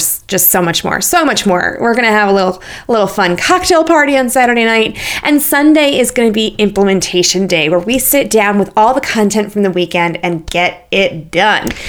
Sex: female